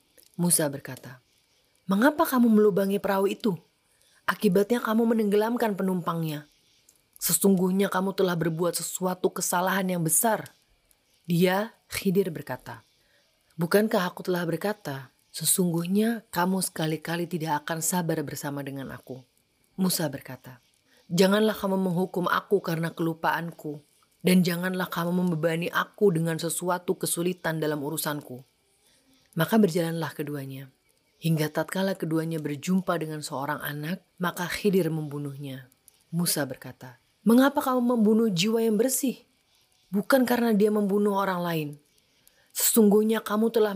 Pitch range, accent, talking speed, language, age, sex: 155-200 Hz, native, 115 wpm, Indonesian, 30-49, female